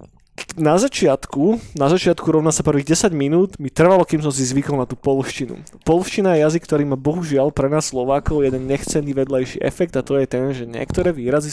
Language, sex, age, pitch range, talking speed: Slovak, male, 20-39, 135-160 Hz, 200 wpm